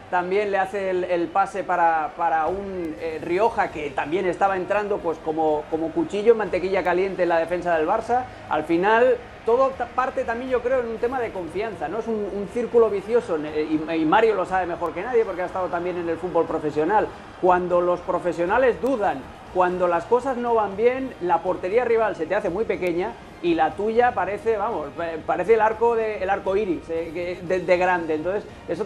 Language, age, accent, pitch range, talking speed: Spanish, 40-59, Spanish, 170-220 Hz, 195 wpm